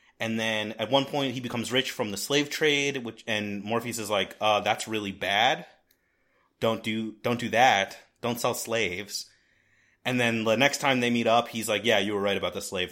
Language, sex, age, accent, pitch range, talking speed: English, male, 30-49, American, 110-140 Hz, 215 wpm